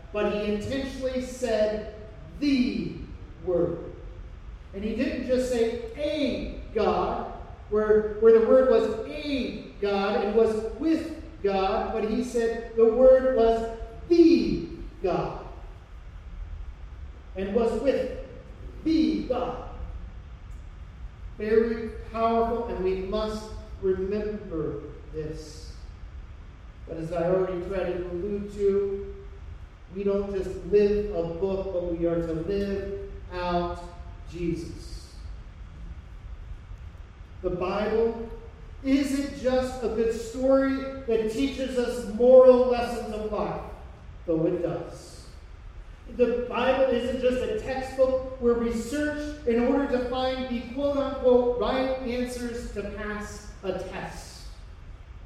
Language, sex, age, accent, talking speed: English, male, 40-59, American, 110 wpm